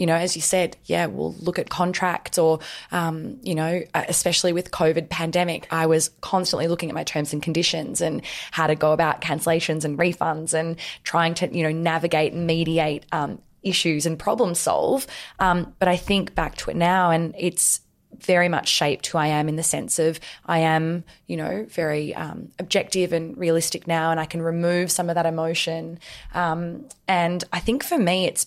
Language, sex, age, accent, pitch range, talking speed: English, female, 20-39, Australian, 160-175 Hz, 195 wpm